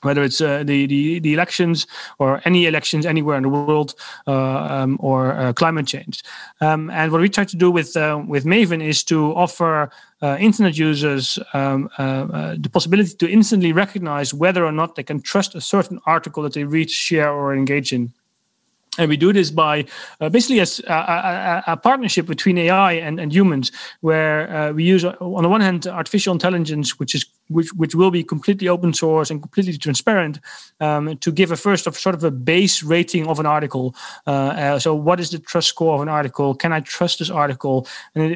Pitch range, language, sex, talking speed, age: 145-175 Hz, English, male, 200 wpm, 30-49